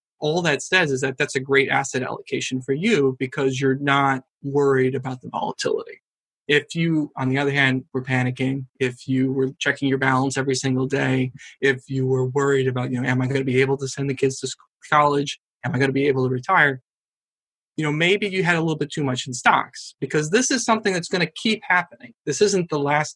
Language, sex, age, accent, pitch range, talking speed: English, male, 20-39, American, 130-150 Hz, 230 wpm